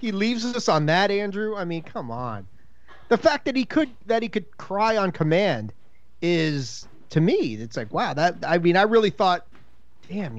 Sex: male